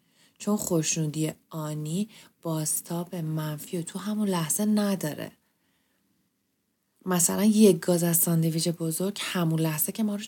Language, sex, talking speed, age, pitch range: Persian, female, 125 wpm, 20-39, 160-205 Hz